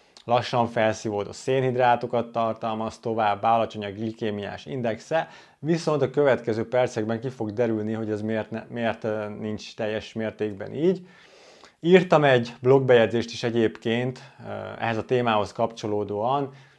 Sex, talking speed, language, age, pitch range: male, 120 wpm, Hungarian, 20-39, 110-130 Hz